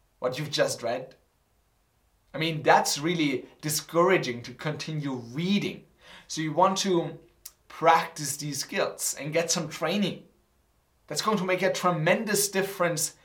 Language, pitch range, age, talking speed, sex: English, 150-195 Hz, 30-49, 135 wpm, male